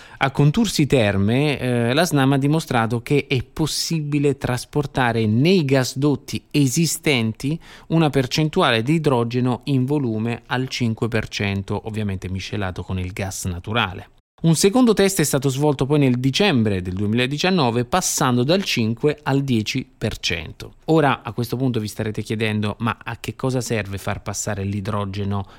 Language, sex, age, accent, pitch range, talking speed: Italian, male, 20-39, native, 110-150 Hz, 140 wpm